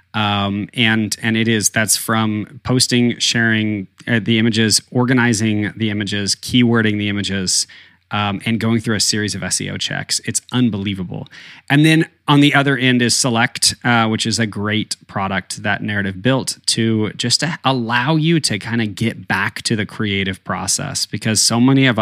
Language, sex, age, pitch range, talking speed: English, male, 20-39, 105-130 Hz, 175 wpm